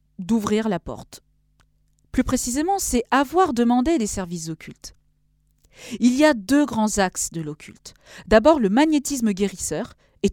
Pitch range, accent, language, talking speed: 190-275 Hz, French, French, 140 wpm